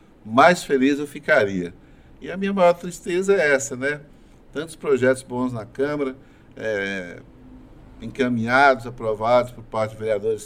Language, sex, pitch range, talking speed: Portuguese, male, 110-135 Hz, 140 wpm